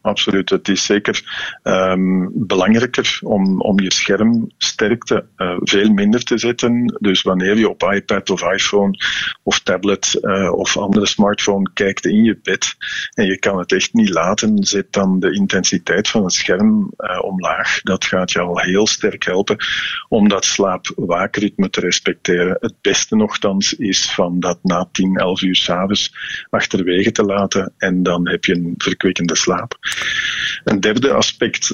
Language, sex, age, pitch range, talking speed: Dutch, male, 50-69, 95-120 Hz, 155 wpm